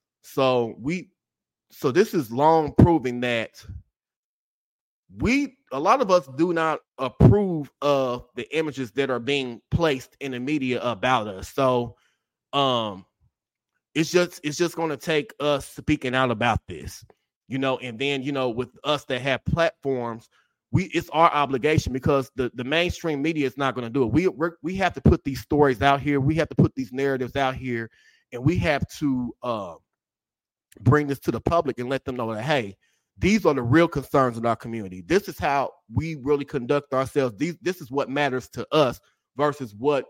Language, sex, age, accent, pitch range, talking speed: English, male, 20-39, American, 125-150 Hz, 185 wpm